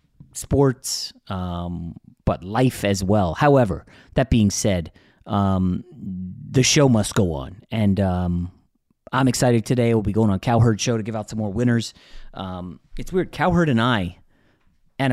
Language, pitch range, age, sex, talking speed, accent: English, 90-120 Hz, 30-49, male, 160 wpm, American